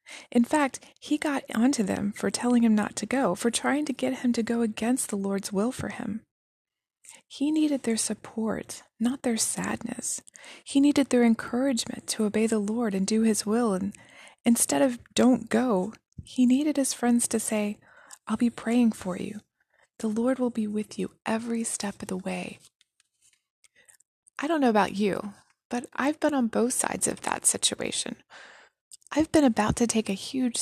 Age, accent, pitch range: 20-39, American, 205-250 Hz